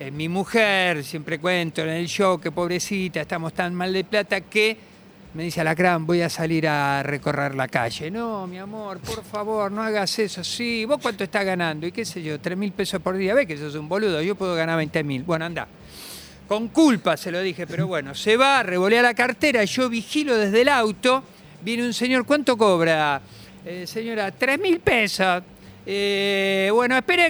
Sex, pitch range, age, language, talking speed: male, 180-240 Hz, 50-69, Spanish, 190 wpm